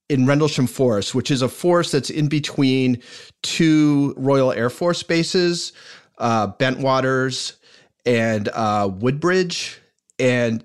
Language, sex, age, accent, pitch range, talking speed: English, male, 30-49, American, 115-145 Hz, 120 wpm